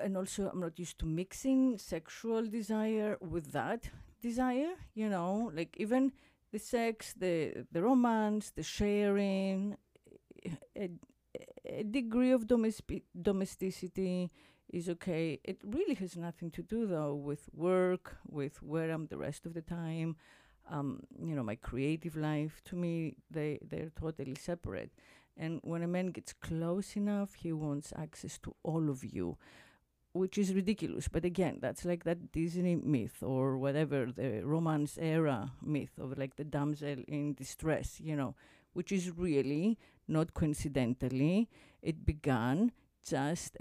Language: English